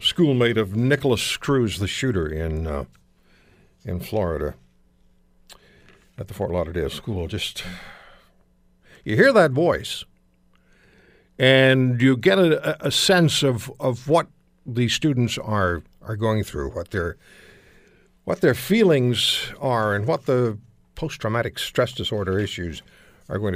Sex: male